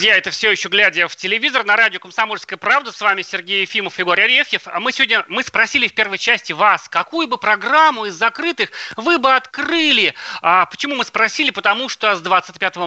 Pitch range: 195-270 Hz